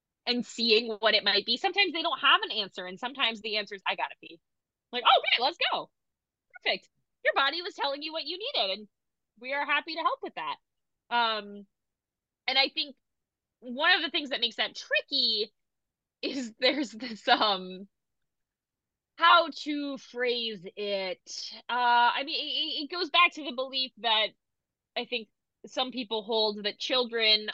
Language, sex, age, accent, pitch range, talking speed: English, female, 20-39, American, 200-275 Hz, 175 wpm